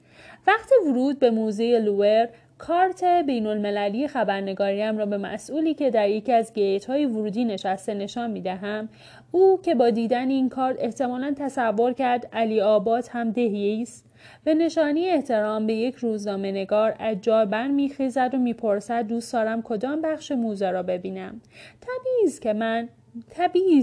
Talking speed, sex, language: 145 wpm, female, Persian